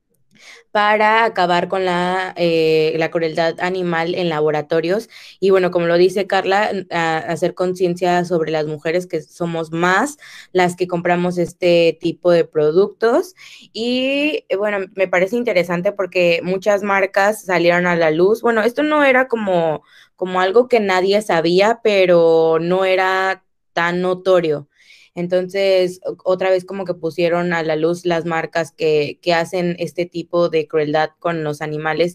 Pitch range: 165-190 Hz